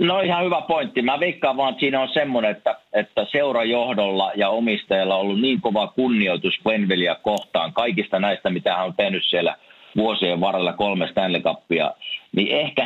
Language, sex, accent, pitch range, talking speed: Finnish, male, native, 110-135 Hz, 175 wpm